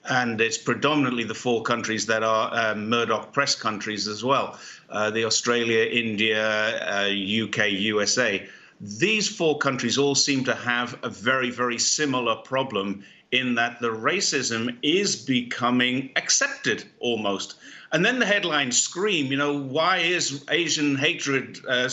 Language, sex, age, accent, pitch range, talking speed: English, male, 50-69, British, 110-130 Hz, 145 wpm